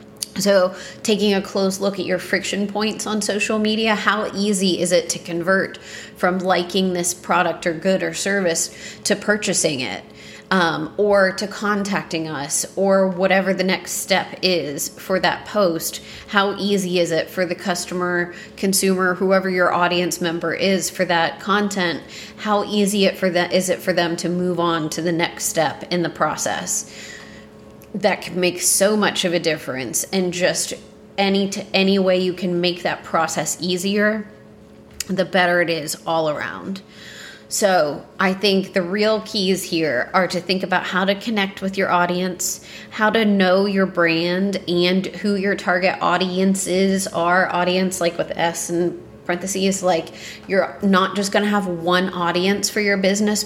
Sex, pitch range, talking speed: female, 175-200 Hz, 170 wpm